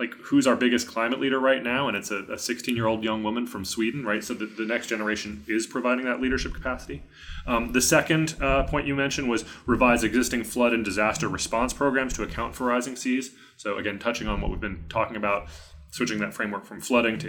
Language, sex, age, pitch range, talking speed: English, male, 30-49, 105-125 Hz, 225 wpm